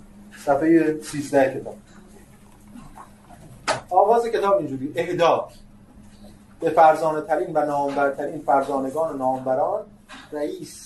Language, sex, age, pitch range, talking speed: Persian, male, 30-49, 110-165 Hz, 90 wpm